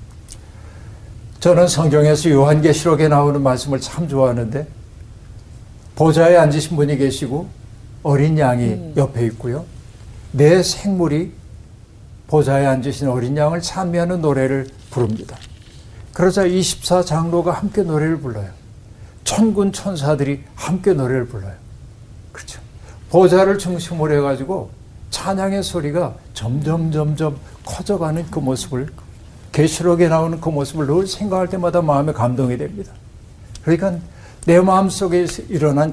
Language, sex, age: Korean, male, 60-79